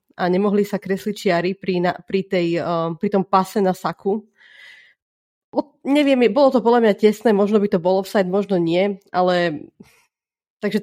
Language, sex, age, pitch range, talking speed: Slovak, female, 30-49, 185-215 Hz, 160 wpm